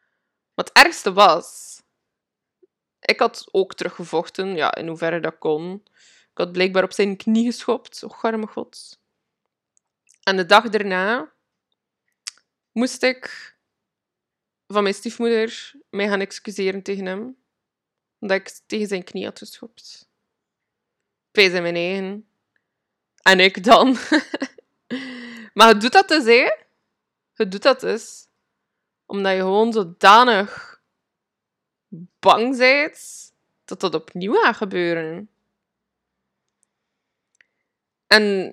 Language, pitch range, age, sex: Dutch, 190-235 Hz, 20-39, female